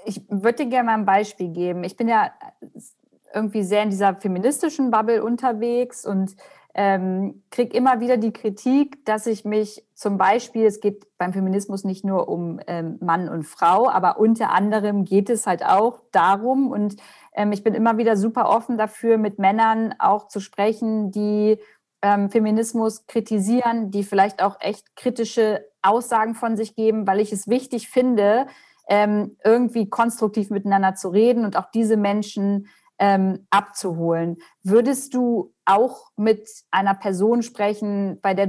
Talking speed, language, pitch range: 155 wpm, German, 195-225 Hz